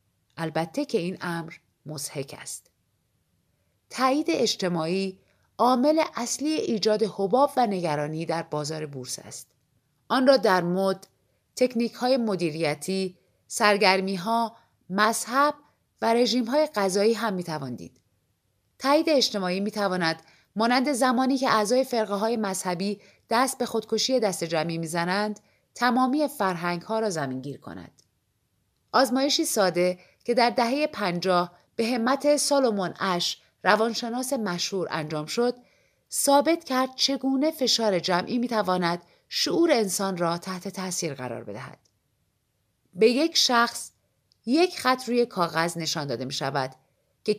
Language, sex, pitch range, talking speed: Persian, female, 160-245 Hz, 120 wpm